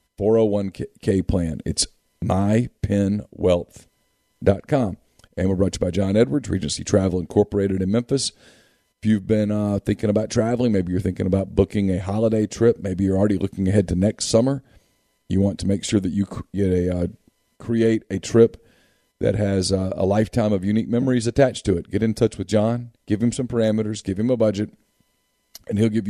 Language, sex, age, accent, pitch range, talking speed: English, male, 40-59, American, 95-110 Hz, 185 wpm